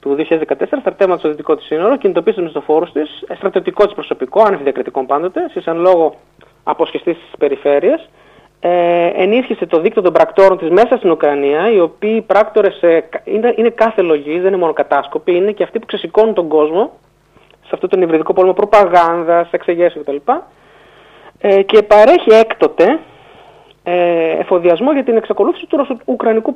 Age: 30-49